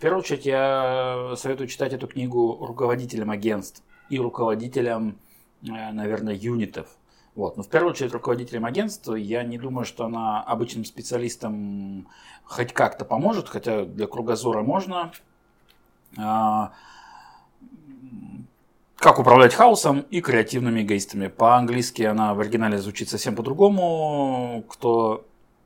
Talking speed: 115 wpm